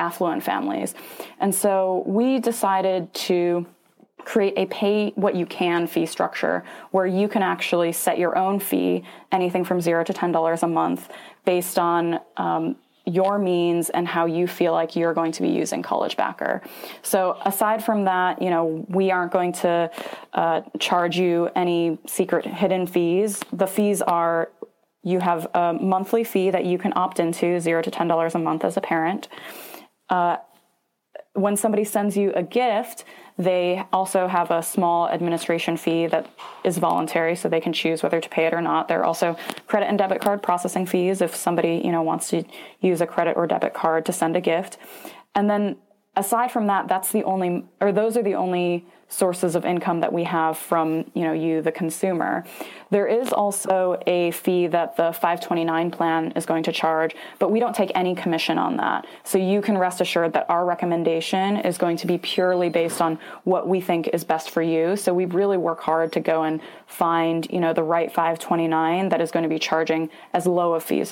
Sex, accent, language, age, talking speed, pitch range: female, American, English, 20-39, 190 wpm, 165-190 Hz